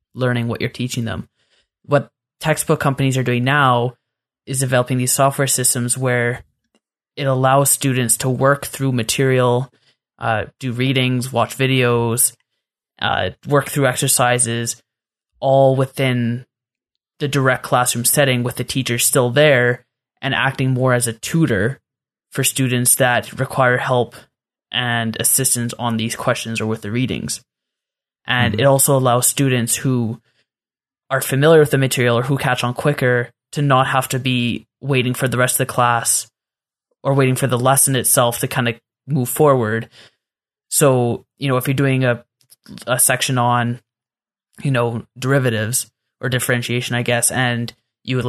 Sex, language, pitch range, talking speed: male, English, 120-135 Hz, 155 wpm